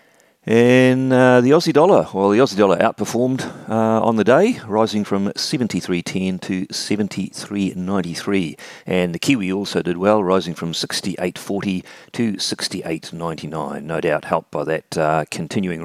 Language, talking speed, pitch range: English, 140 wpm, 90-120 Hz